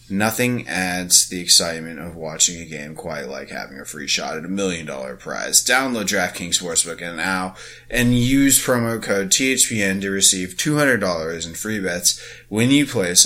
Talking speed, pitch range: 165 wpm, 90-120 Hz